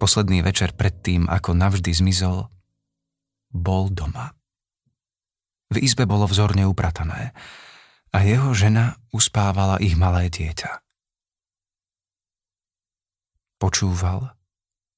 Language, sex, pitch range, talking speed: Slovak, male, 90-105 Hz, 85 wpm